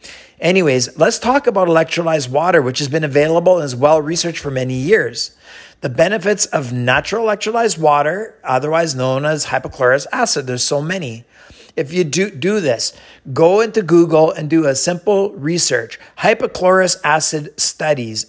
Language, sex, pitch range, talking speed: English, male, 135-175 Hz, 150 wpm